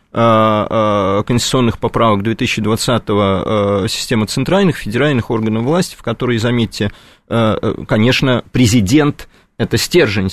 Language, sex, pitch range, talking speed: Russian, male, 110-145 Hz, 85 wpm